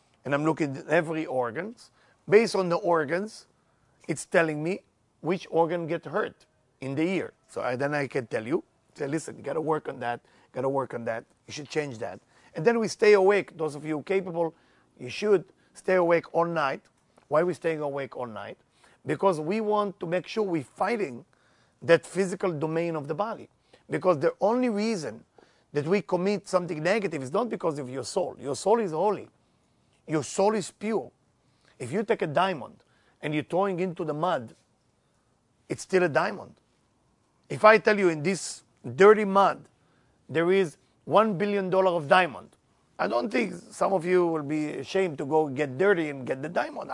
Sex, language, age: male, English, 40-59